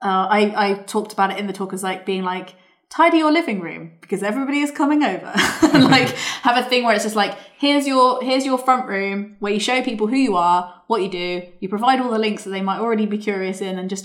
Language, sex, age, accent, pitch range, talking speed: English, female, 20-39, British, 185-215 Hz, 255 wpm